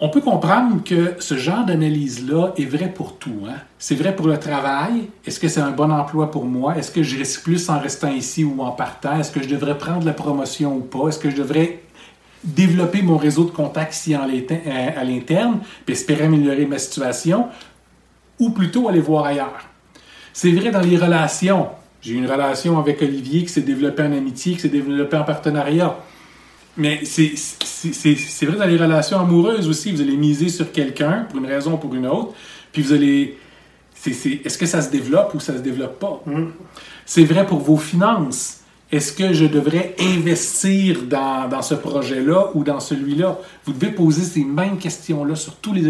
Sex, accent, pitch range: male, Canadian, 140-180 Hz